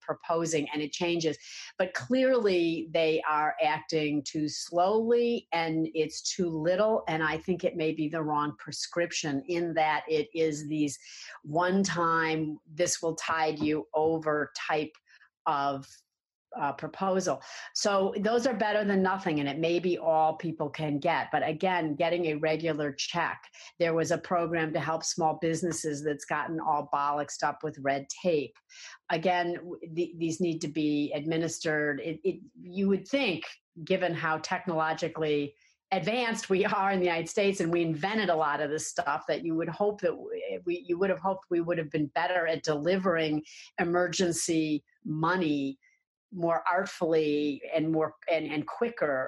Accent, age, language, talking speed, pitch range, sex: American, 50-69, English, 160 wpm, 155-180 Hz, female